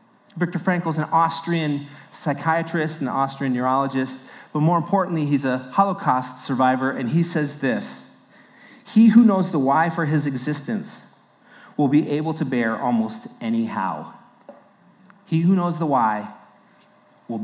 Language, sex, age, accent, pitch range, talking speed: English, male, 30-49, American, 150-205 Hz, 145 wpm